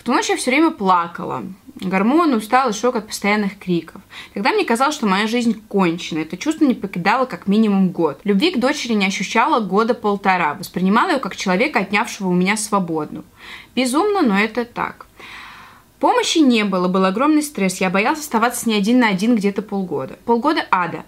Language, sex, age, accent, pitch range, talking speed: Russian, female, 20-39, native, 185-245 Hz, 175 wpm